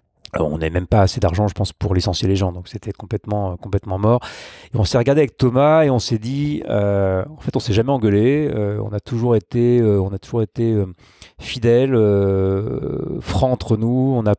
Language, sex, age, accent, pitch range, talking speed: French, male, 30-49, French, 105-125 Hz, 225 wpm